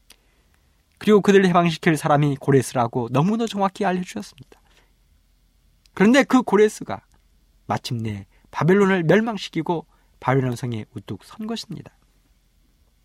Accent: native